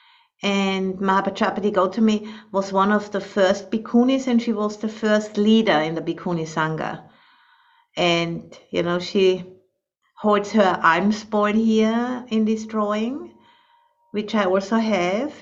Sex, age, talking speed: female, 50-69, 135 wpm